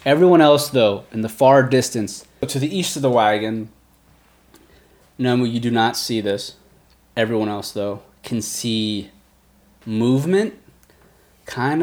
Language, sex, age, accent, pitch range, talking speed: English, male, 20-39, American, 100-125 Hz, 130 wpm